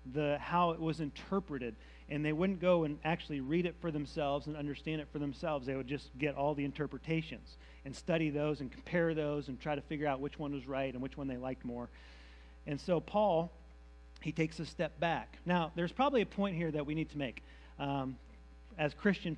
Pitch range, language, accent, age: 130-180 Hz, English, American, 40-59